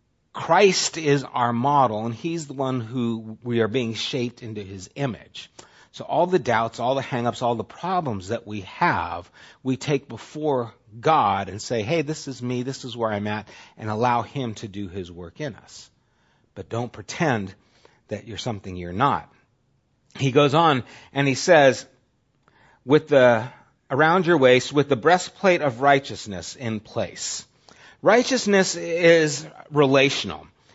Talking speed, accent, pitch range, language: 160 wpm, American, 120-160 Hz, English